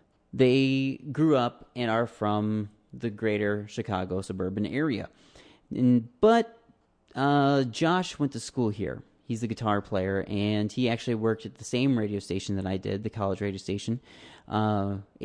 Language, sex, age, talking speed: English, male, 30-49, 155 wpm